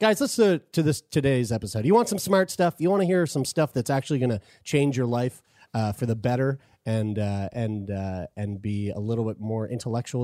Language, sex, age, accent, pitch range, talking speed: English, male, 30-49, American, 115-160 Hz, 230 wpm